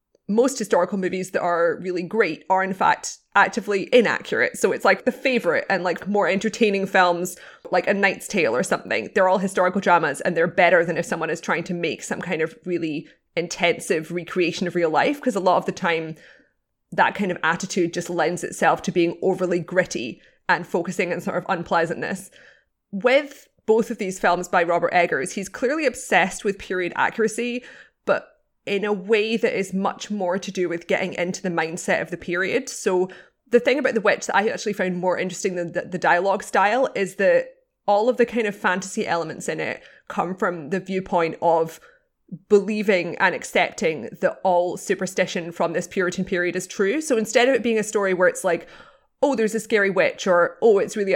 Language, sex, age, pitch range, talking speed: English, female, 20-39, 175-210 Hz, 200 wpm